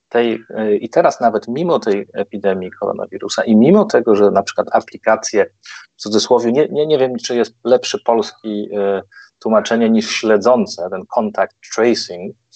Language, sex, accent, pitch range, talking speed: Polish, male, native, 100-120 Hz, 160 wpm